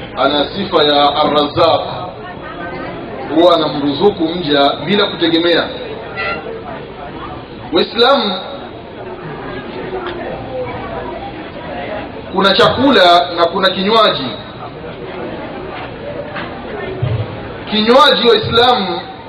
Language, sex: Swahili, male